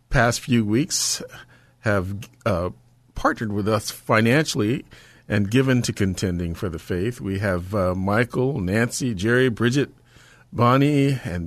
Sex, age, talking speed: male, 50-69, 130 wpm